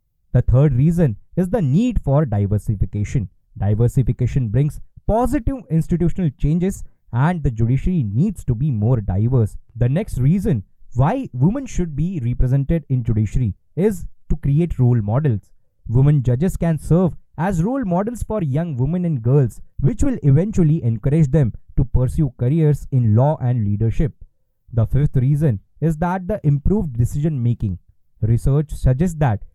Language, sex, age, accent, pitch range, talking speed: English, male, 20-39, Indian, 115-160 Hz, 145 wpm